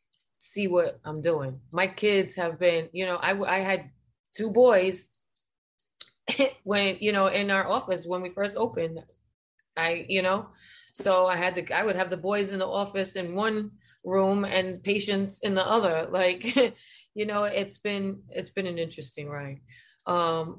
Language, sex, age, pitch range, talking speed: English, female, 20-39, 160-195 Hz, 170 wpm